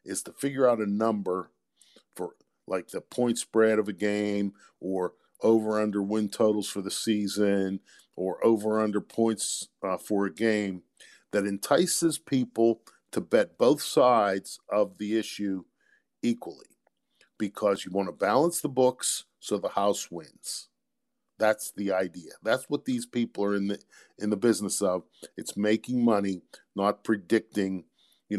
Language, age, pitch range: English, 50-69, 95-115 Hz